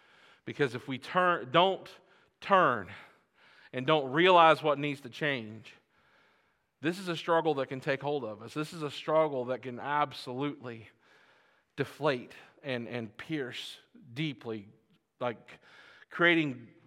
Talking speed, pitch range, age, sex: 130 wpm, 150-220 Hz, 40-59, male